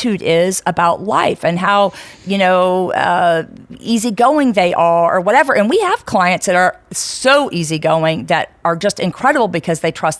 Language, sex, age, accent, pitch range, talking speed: English, female, 50-69, American, 170-220 Hz, 165 wpm